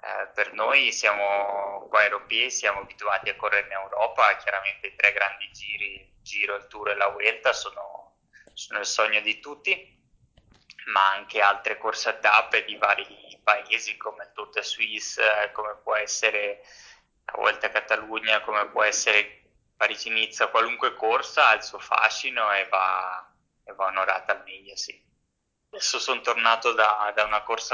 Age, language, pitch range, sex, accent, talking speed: 20-39, Italian, 105-115 Hz, male, native, 160 wpm